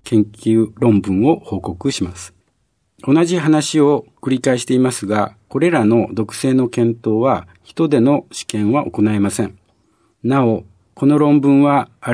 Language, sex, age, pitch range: Japanese, male, 60-79, 100-140 Hz